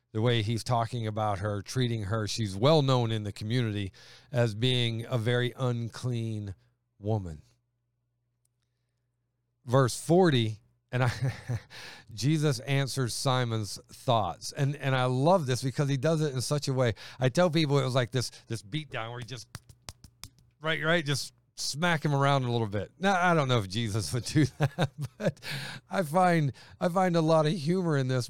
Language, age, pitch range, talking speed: English, 40-59, 115-140 Hz, 175 wpm